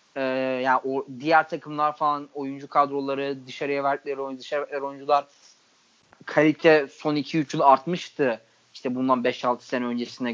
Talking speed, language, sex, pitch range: 135 wpm, Turkish, male, 135-175 Hz